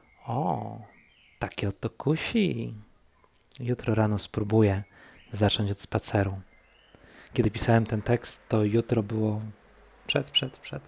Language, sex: Polish, male